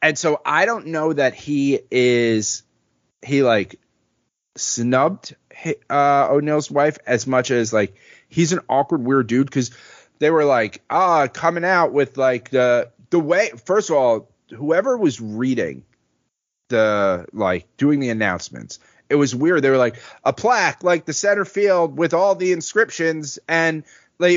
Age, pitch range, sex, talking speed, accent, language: 30-49, 125-170 Hz, male, 165 wpm, American, English